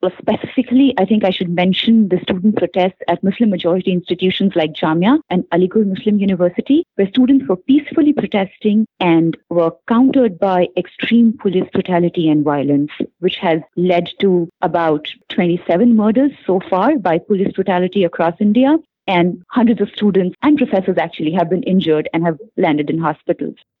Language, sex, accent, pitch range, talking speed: English, female, Indian, 180-240 Hz, 155 wpm